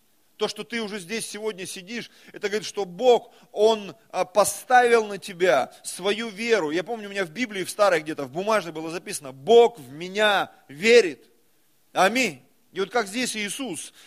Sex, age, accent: male, 30-49, native